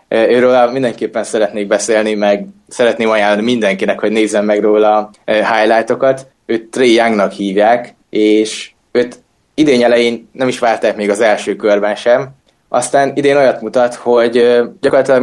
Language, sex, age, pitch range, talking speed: Hungarian, male, 20-39, 105-125 Hz, 140 wpm